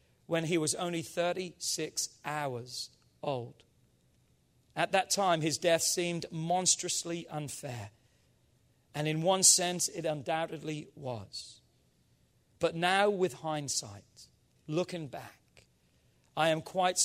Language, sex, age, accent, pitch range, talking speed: English, male, 40-59, British, 135-190 Hz, 110 wpm